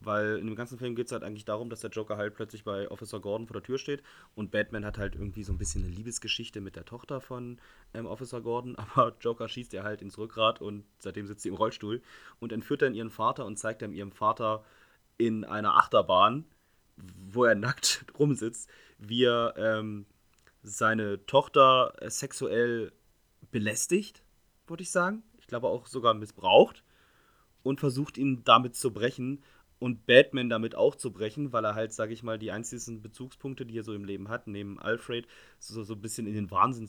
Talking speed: 200 wpm